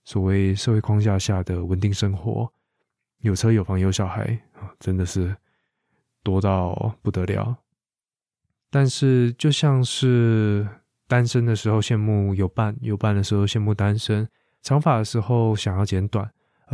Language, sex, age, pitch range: Chinese, male, 20-39, 100-120 Hz